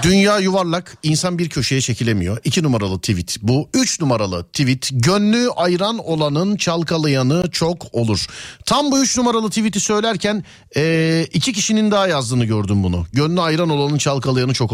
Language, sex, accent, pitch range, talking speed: Turkish, male, native, 110-180 Hz, 150 wpm